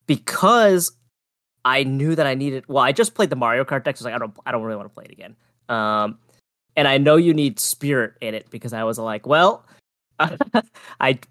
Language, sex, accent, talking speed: English, male, American, 235 wpm